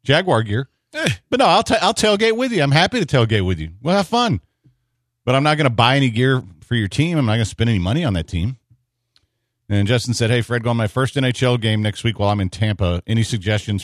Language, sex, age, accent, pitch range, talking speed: English, male, 40-59, American, 105-125 Hz, 250 wpm